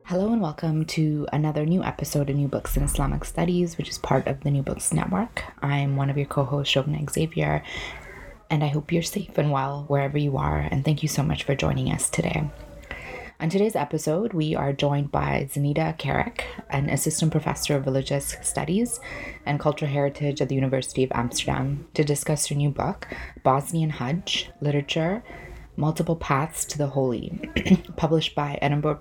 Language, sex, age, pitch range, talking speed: English, female, 20-39, 140-160 Hz, 180 wpm